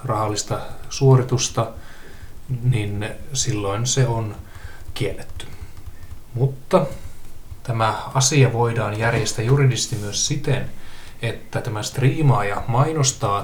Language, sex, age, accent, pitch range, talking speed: Finnish, male, 20-39, native, 105-135 Hz, 85 wpm